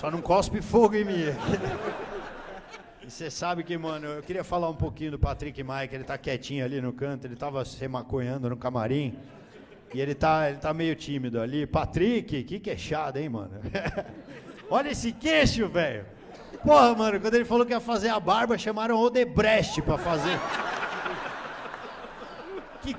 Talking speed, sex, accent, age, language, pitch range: 165 wpm, male, Brazilian, 50-69, Portuguese, 150-225 Hz